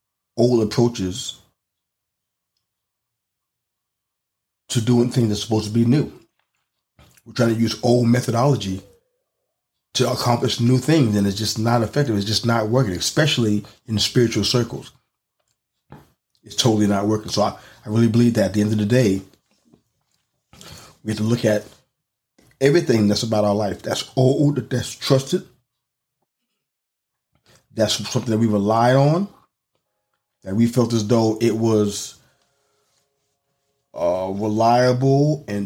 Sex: male